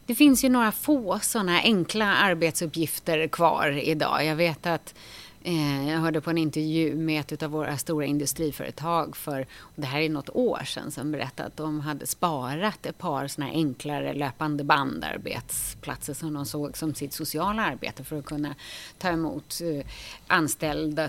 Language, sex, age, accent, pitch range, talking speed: Swedish, female, 30-49, native, 150-195 Hz, 160 wpm